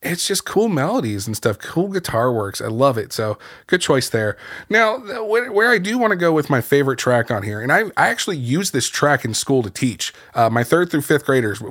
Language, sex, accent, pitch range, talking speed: English, male, American, 115-150 Hz, 230 wpm